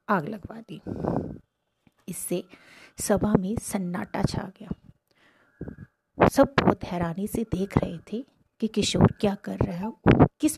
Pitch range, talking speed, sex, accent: 180-225 Hz, 130 wpm, female, native